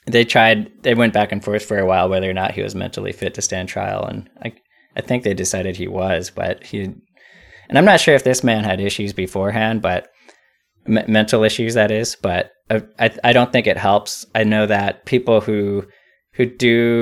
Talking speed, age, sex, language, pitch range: 210 wpm, 20-39, male, English, 100-120 Hz